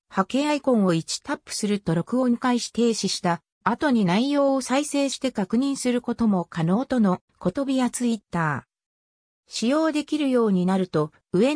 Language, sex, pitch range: Japanese, female, 180-255 Hz